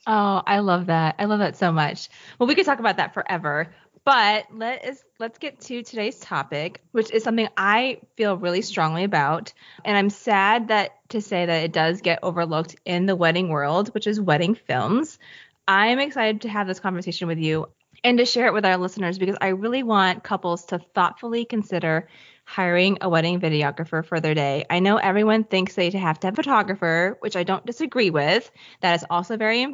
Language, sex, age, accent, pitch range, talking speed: English, female, 20-39, American, 175-235 Hz, 200 wpm